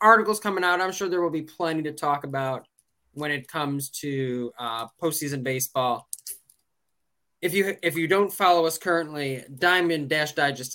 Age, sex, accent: 10-29, male, American